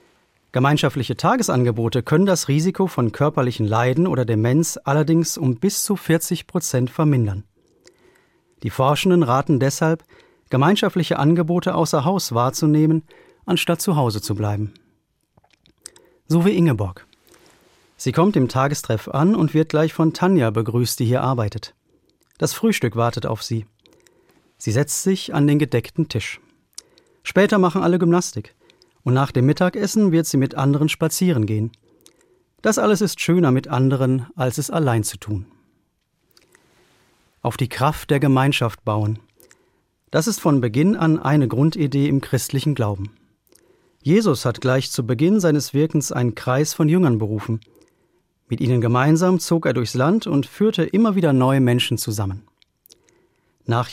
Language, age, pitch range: German, 40-59, 120-165 Hz